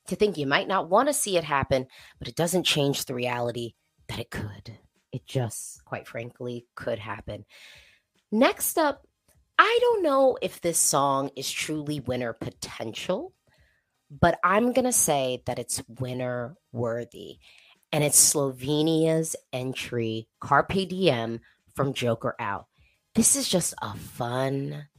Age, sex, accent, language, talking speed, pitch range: 30-49, female, American, English, 145 wpm, 120-165 Hz